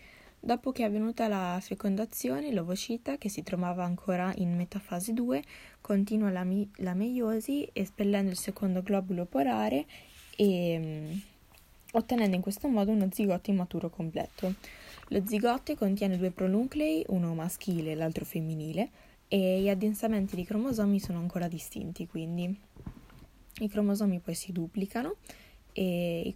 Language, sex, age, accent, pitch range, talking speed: Italian, female, 20-39, native, 175-215 Hz, 135 wpm